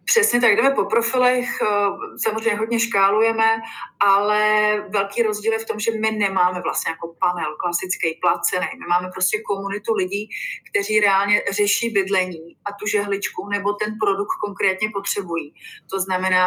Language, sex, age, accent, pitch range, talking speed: Czech, female, 30-49, native, 185-215 Hz, 150 wpm